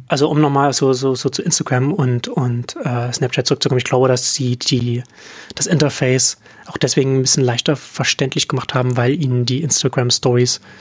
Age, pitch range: 30-49, 125-145 Hz